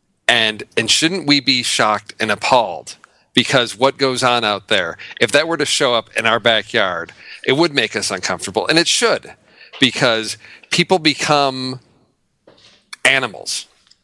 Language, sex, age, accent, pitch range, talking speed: English, male, 40-59, American, 115-140 Hz, 150 wpm